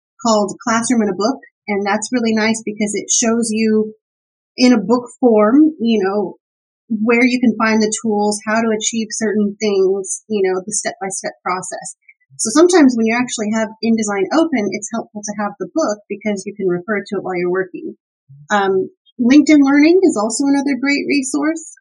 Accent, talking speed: American, 180 wpm